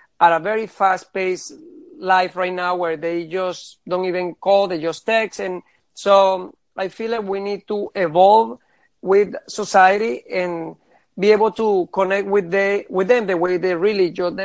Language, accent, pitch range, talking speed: English, Spanish, 175-200 Hz, 180 wpm